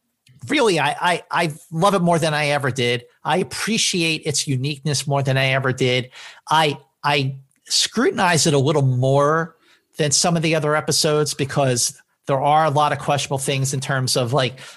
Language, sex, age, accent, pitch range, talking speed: English, male, 50-69, American, 130-160 Hz, 185 wpm